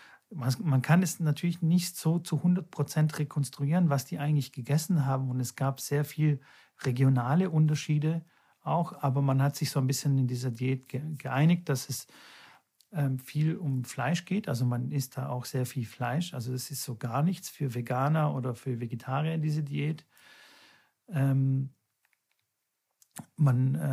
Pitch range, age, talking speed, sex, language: 130-155 Hz, 50-69, 160 wpm, male, German